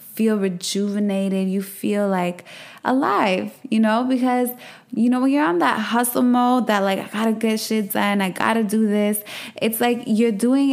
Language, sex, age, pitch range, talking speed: English, female, 20-39, 180-210 Hz, 180 wpm